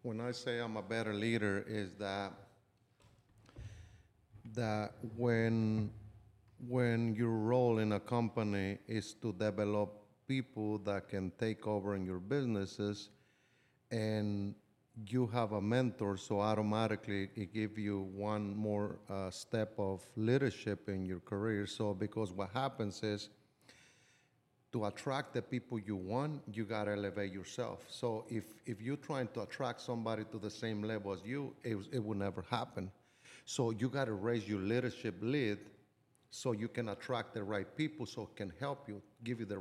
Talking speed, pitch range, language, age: 160 wpm, 105-120 Hz, English, 50-69